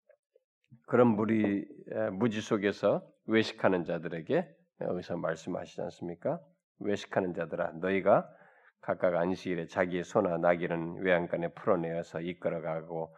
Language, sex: Korean, male